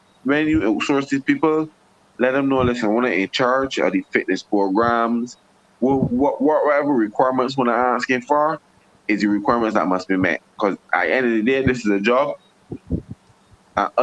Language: English